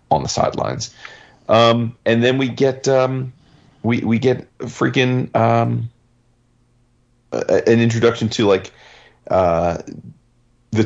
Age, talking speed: 30-49, 120 wpm